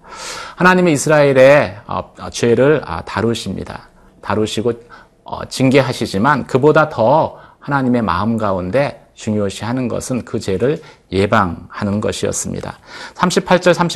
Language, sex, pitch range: Korean, male, 105-140 Hz